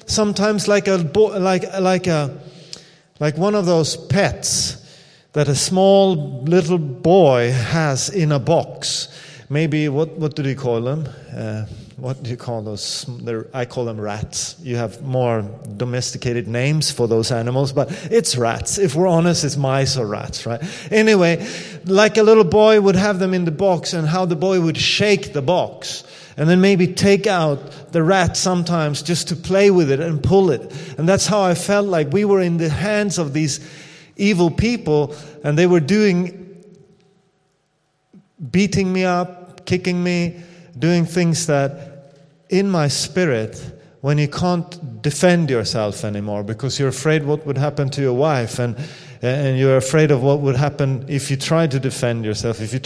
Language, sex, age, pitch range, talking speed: English, male, 30-49, 135-180 Hz, 175 wpm